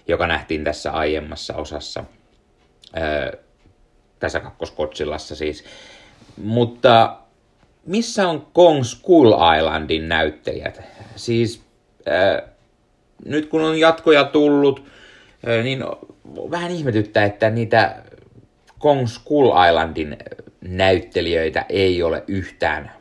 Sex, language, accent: male, Finnish, native